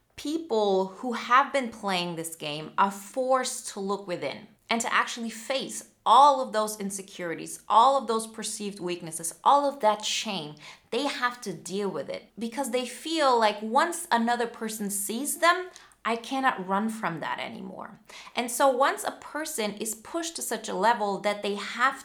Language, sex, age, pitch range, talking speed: English, female, 30-49, 195-255 Hz, 175 wpm